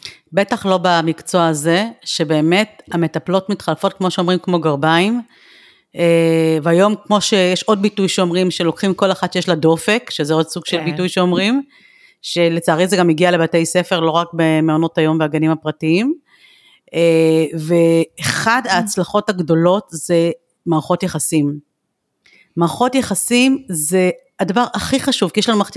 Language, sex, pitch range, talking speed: Hebrew, female, 165-210 Hz, 135 wpm